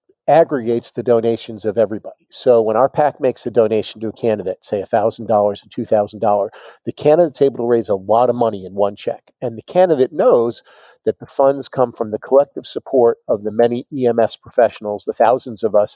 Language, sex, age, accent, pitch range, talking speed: English, male, 50-69, American, 110-125 Hz, 195 wpm